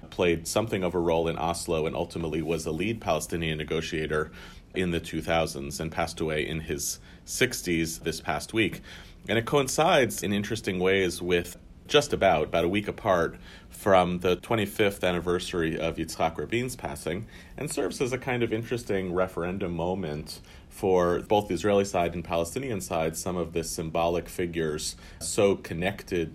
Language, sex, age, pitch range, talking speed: English, male, 40-59, 80-95 Hz, 160 wpm